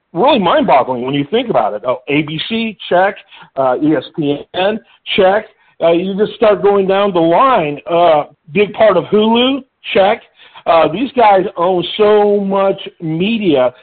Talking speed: 150 wpm